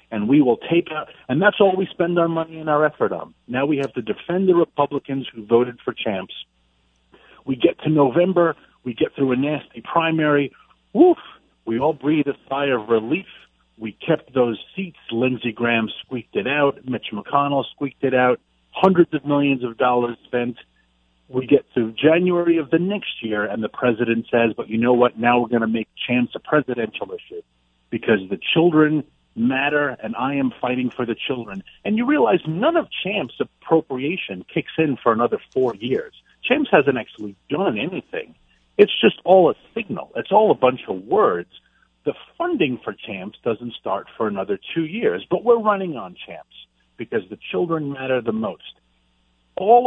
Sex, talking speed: male, 185 wpm